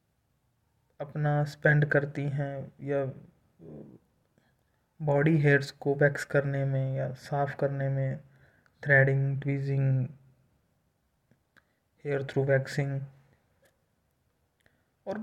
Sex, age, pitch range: male, 20-39, 135-160 Hz